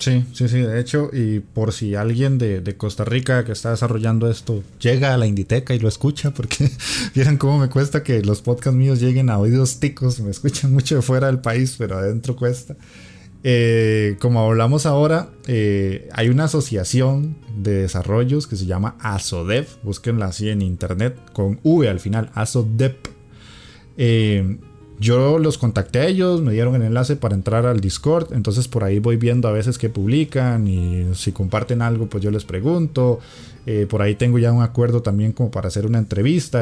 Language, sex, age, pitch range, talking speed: Spanish, male, 20-39, 105-135 Hz, 185 wpm